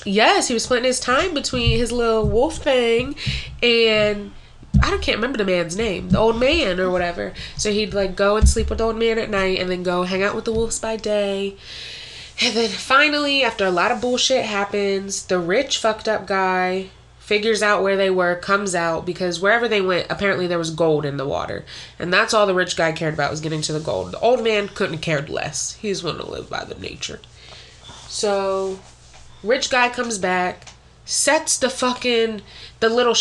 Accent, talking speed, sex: American, 210 wpm, female